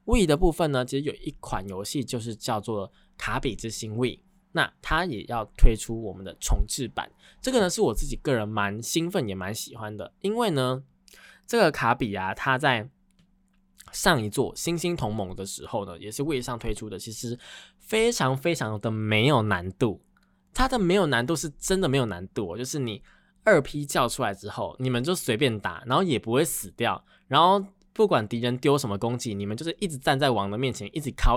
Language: Chinese